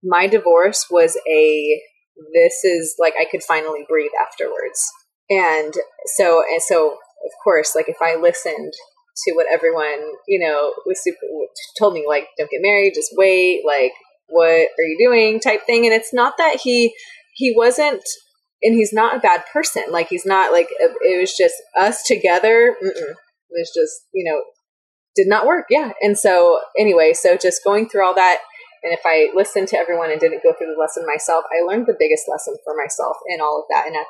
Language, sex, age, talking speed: English, female, 20-39, 195 wpm